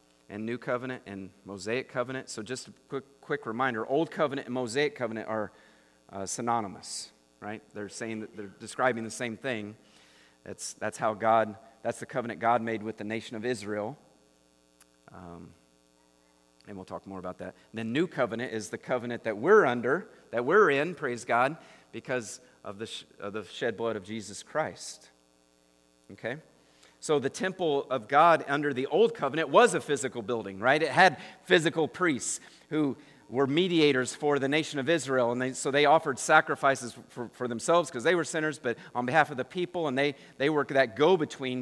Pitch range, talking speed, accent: 105-135 Hz, 185 wpm, American